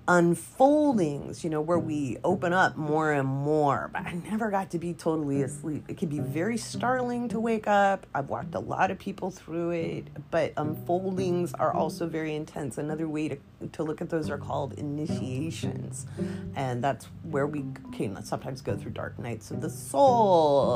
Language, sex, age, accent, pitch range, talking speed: English, female, 30-49, American, 145-195 Hz, 180 wpm